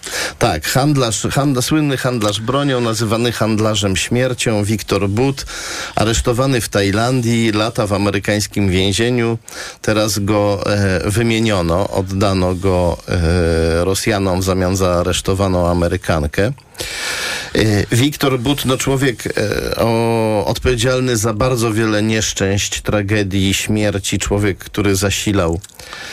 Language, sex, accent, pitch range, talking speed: Polish, male, native, 100-125 Hz, 95 wpm